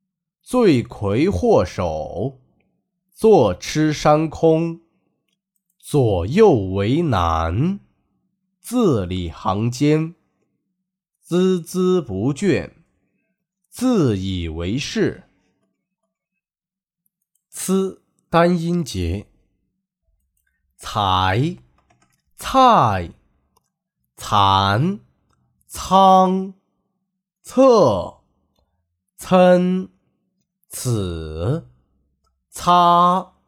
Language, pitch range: Chinese, 125-190 Hz